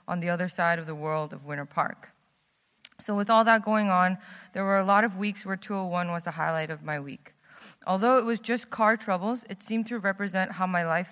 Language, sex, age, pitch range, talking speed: English, female, 20-39, 175-210 Hz, 230 wpm